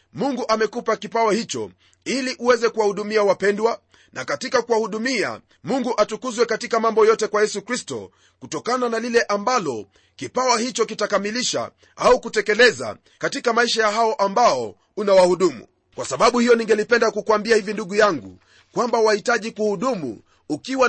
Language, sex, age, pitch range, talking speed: Swahili, male, 30-49, 205-240 Hz, 130 wpm